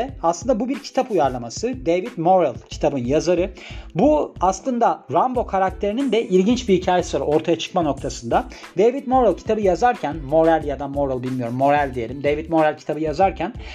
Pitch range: 150-205 Hz